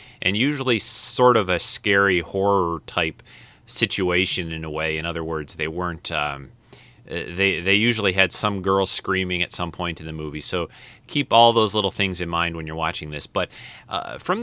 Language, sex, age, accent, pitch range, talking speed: English, male, 30-49, American, 85-110 Hz, 190 wpm